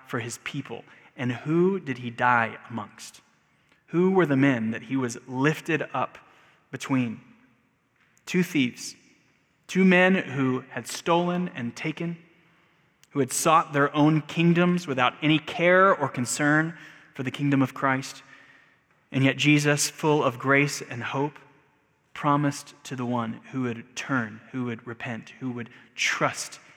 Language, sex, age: English, male, 20-39